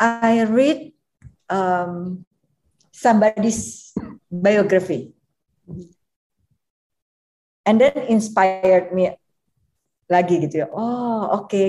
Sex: female